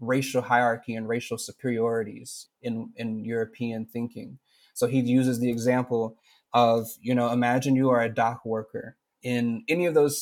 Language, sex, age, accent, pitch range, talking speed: English, male, 20-39, American, 115-130 Hz, 160 wpm